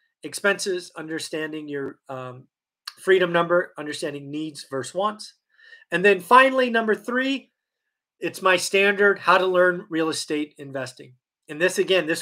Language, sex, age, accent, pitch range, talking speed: English, male, 30-49, American, 155-205 Hz, 135 wpm